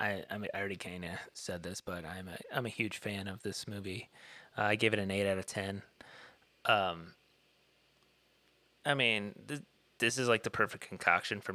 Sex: male